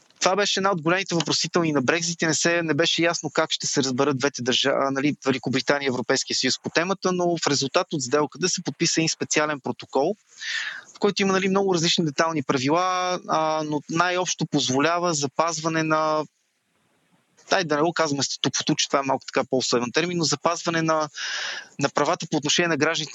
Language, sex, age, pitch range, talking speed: Bulgarian, male, 20-39, 135-170 Hz, 180 wpm